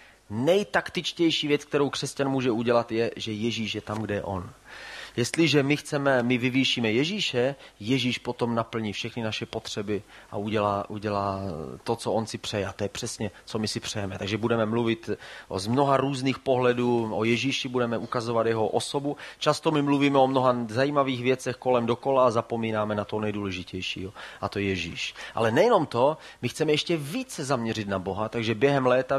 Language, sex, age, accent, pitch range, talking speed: Czech, male, 30-49, native, 105-130 Hz, 175 wpm